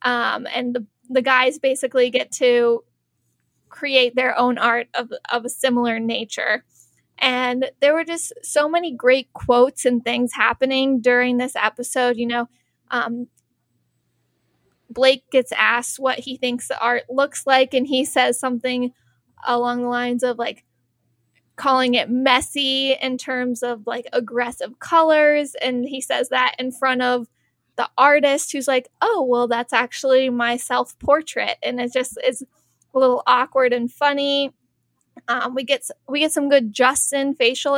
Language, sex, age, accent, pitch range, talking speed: English, female, 20-39, American, 245-270 Hz, 155 wpm